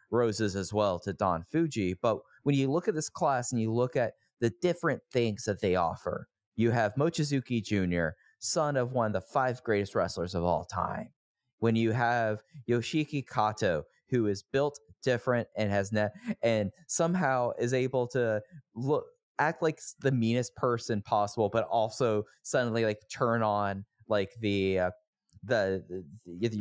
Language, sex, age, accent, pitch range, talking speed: English, male, 20-39, American, 105-130 Hz, 165 wpm